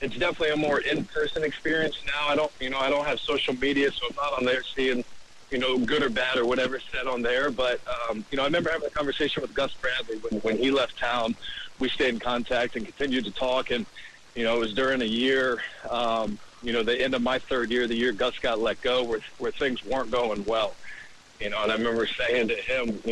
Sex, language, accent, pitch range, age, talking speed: male, English, American, 115-135 Hz, 40-59, 245 wpm